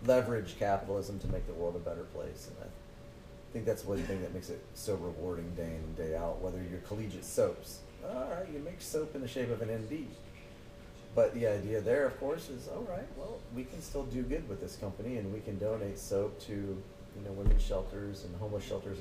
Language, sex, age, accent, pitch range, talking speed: English, male, 30-49, American, 90-110 Hz, 225 wpm